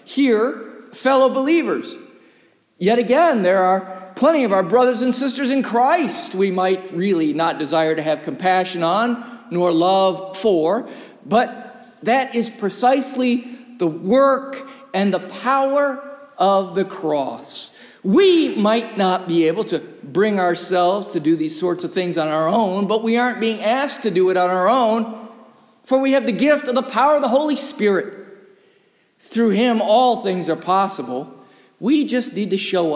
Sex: male